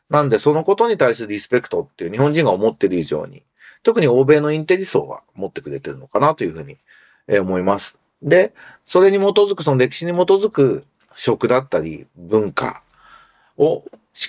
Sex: male